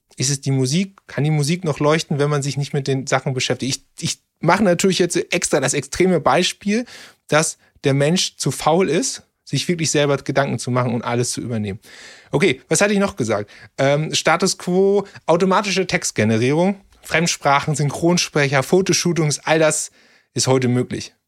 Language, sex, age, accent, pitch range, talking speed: German, male, 30-49, German, 135-180 Hz, 170 wpm